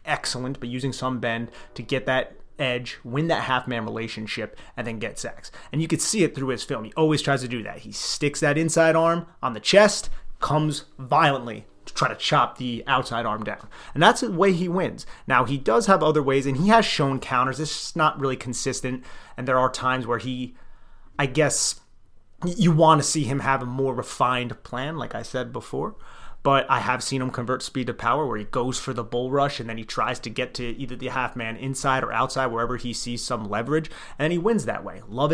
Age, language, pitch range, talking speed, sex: 30-49, English, 120-150 Hz, 230 wpm, male